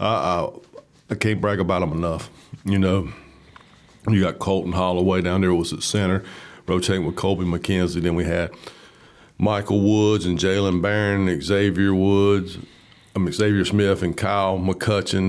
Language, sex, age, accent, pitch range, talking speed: English, male, 50-69, American, 90-100 Hz, 155 wpm